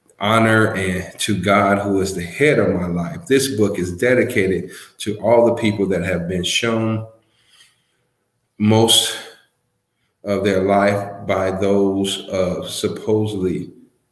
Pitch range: 95-110 Hz